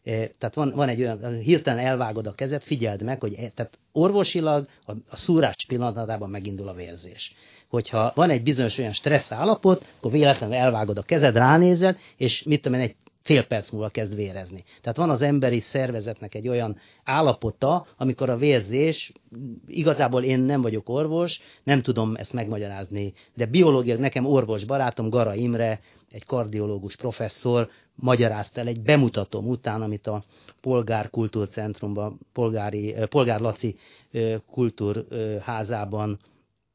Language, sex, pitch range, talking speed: Hungarian, male, 110-135 Hz, 140 wpm